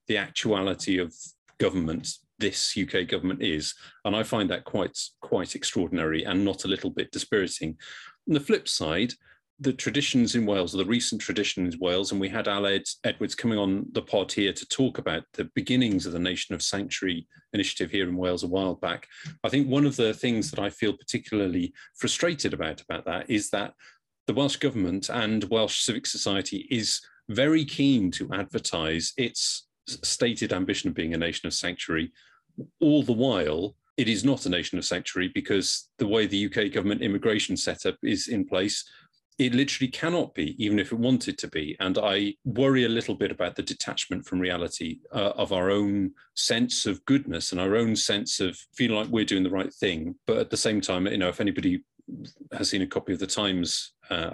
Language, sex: English, male